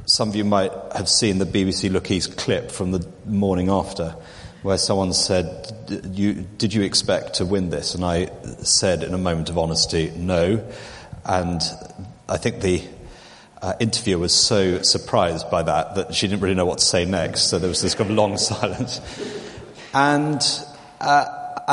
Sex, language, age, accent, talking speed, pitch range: male, English, 30-49, British, 175 wpm, 95-120 Hz